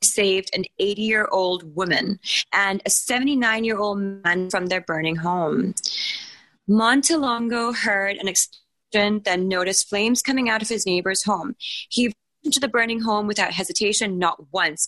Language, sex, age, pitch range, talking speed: English, female, 20-39, 185-220 Hz, 155 wpm